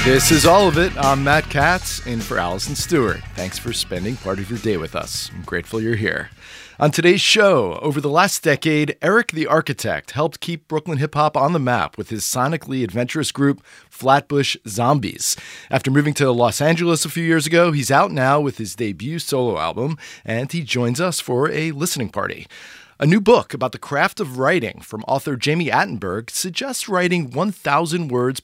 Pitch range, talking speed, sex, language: 115-155 Hz, 190 wpm, male, English